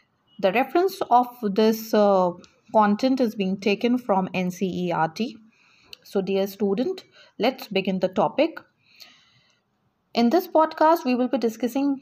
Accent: Indian